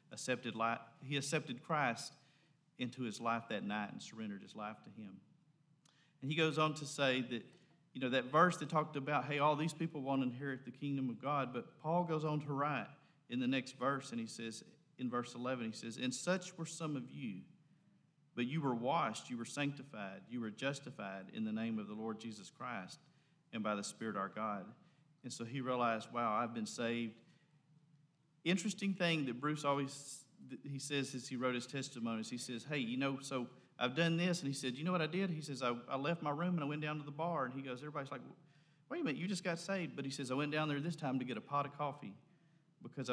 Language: English